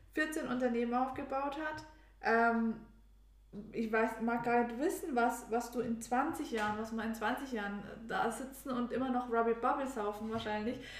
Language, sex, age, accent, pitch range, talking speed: German, female, 20-39, German, 210-240 Hz, 170 wpm